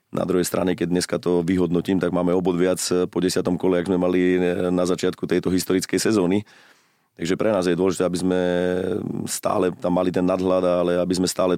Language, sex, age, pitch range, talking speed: Slovak, male, 30-49, 90-95 Hz, 195 wpm